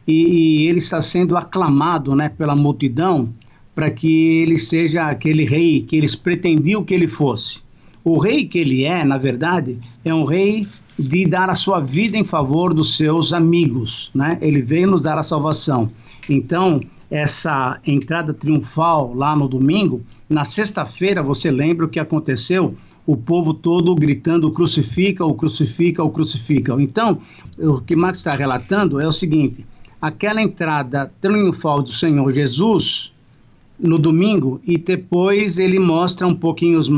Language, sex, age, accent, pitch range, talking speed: Portuguese, male, 60-79, Brazilian, 145-175 Hz, 150 wpm